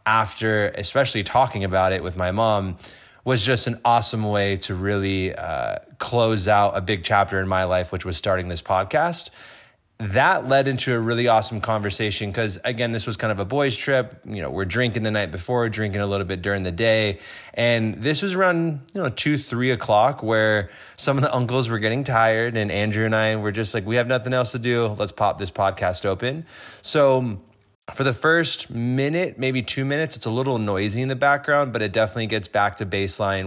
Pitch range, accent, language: 100-125 Hz, American, English